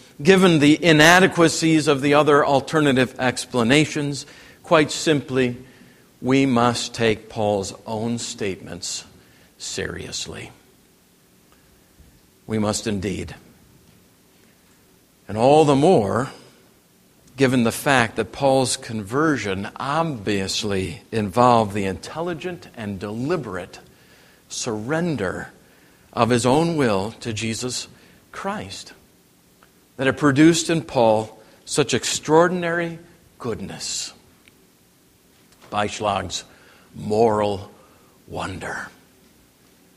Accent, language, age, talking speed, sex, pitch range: American, English, 50-69, 85 wpm, male, 105-150 Hz